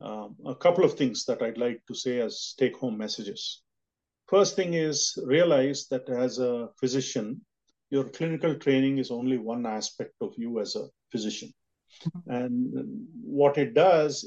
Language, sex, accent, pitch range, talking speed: English, male, Indian, 120-145 Hz, 160 wpm